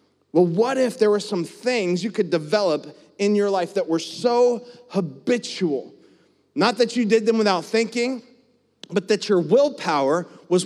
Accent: American